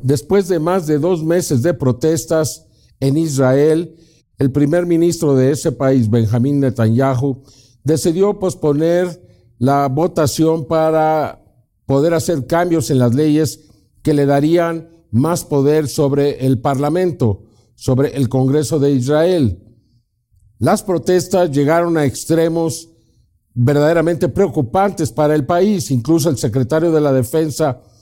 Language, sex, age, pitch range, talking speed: Spanish, male, 50-69, 130-170 Hz, 125 wpm